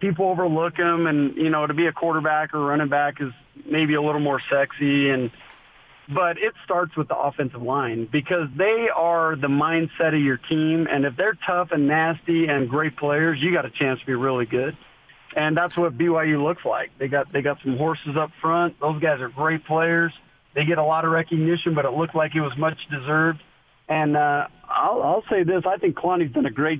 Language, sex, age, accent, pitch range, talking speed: English, male, 40-59, American, 140-165 Hz, 215 wpm